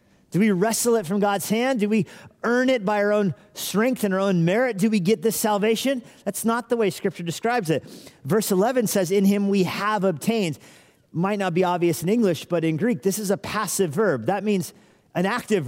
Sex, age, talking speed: male, 40-59, 220 wpm